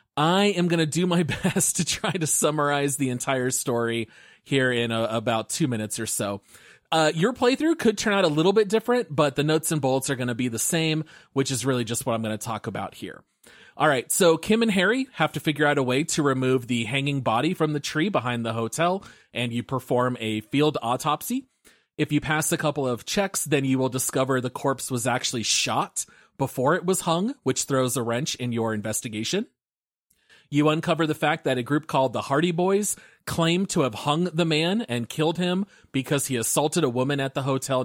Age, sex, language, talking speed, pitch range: 30-49, male, English, 215 wpm, 125-165 Hz